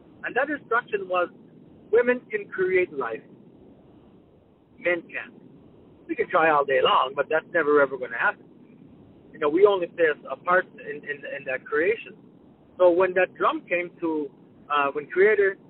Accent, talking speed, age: American, 170 wpm, 60-79